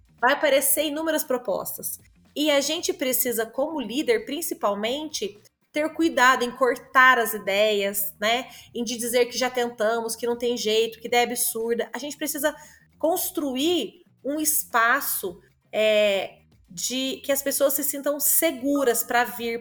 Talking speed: 145 wpm